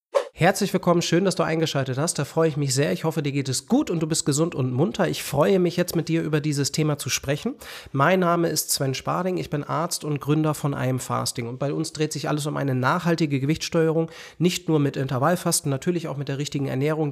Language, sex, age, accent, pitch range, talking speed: German, male, 40-59, German, 140-170 Hz, 240 wpm